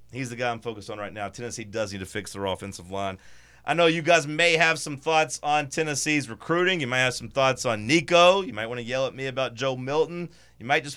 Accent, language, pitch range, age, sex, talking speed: American, English, 120-155 Hz, 30-49, male, 255 wpm